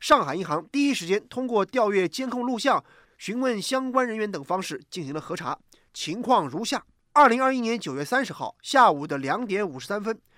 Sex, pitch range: male, 195-260 Hz